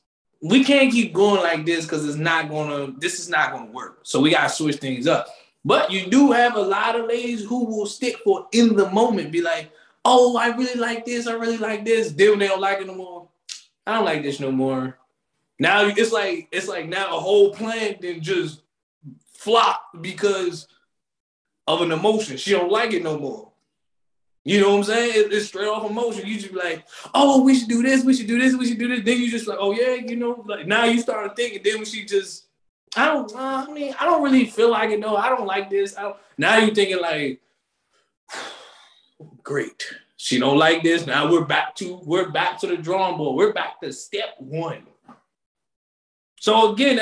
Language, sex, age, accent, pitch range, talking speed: English, male, 20-39, American, 175-235 Hz, 210 wpm